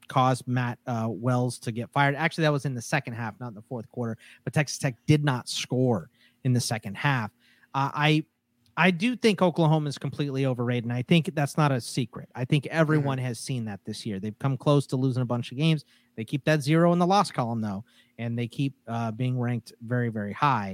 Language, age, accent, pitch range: English, 30-49, American, 120-155 Hz